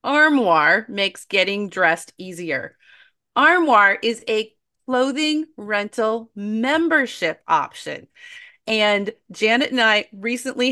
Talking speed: 95 wpm